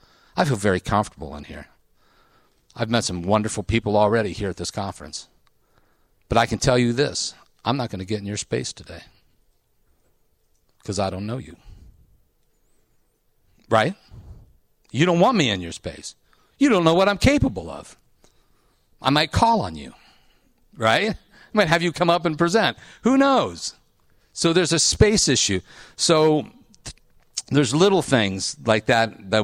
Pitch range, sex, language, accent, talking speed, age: 95-130 Hz, male, English, American, 160 wpm, 50-69